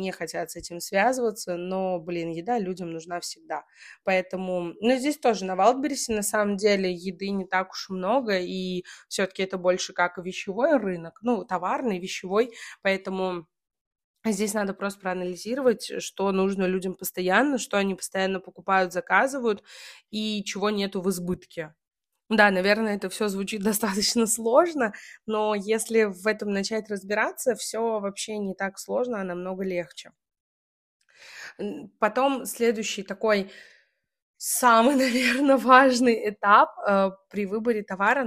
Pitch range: 180-220 Hz